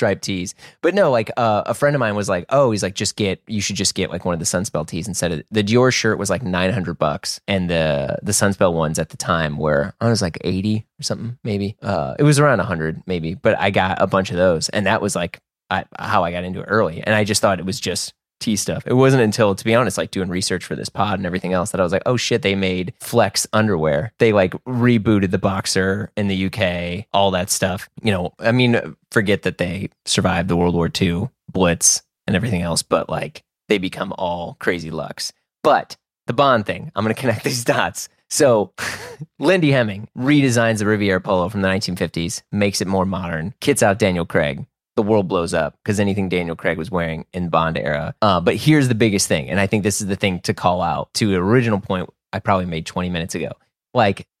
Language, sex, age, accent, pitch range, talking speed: English, male, 20-39, American, 90-110 Hz, 235 wpm